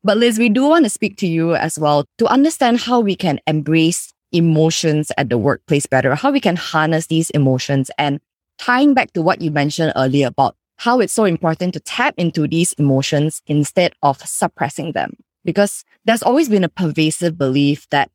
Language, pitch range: English, 145-200 Hz